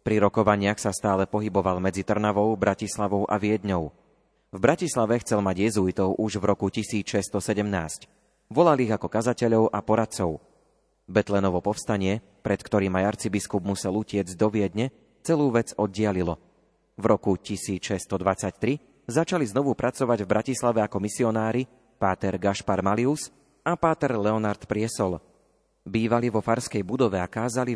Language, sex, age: Slovak, male, 30-49